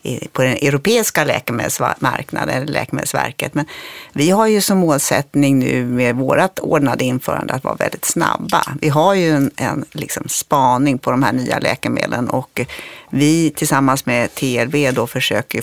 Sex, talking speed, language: female, 150 wpm, Swedish